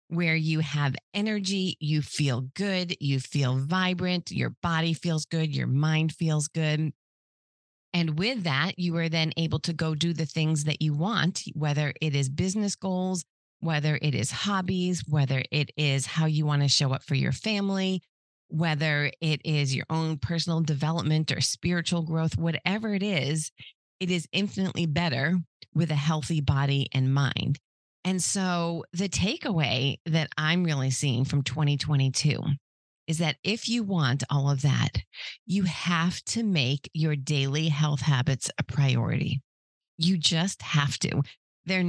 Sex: female